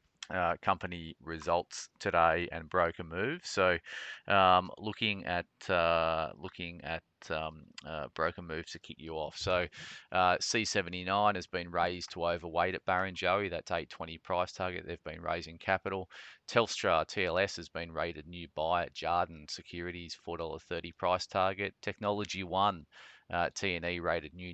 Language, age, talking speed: English, 30-49, 160 wpm